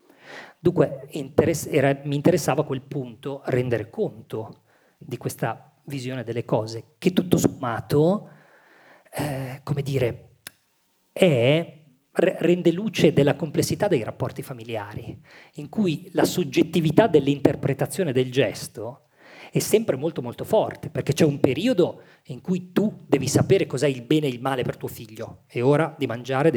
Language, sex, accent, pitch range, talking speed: Italian, male, native, 125-160 Hz, 140 wpm